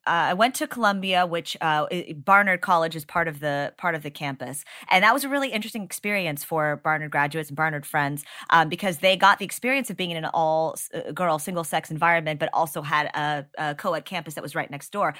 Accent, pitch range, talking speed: American, 155-195 Hz, 215 wpm